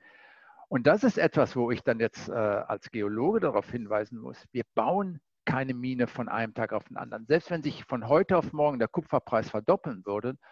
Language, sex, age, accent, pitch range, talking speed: German, male, 50-69, German, 115-150 Hz, 200 wpm